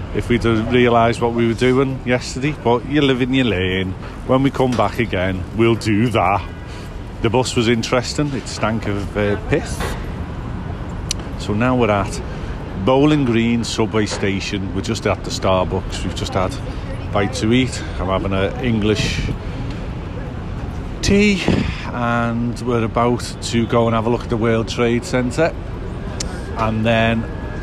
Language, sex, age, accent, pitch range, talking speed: English, male, 50-69, British, 95-120 Hz, 160 wpm